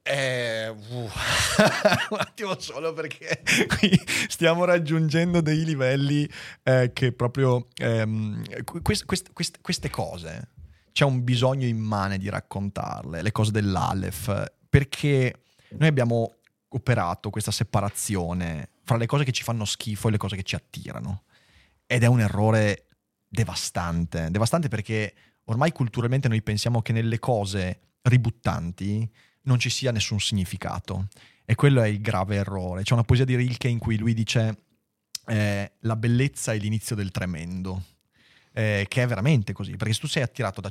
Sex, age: male, 30-49